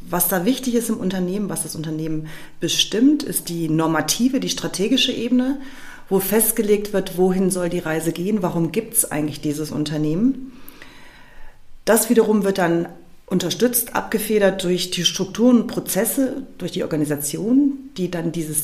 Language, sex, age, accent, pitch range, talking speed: German, female, 40-59, German, 165-215 Hz, 150 wpm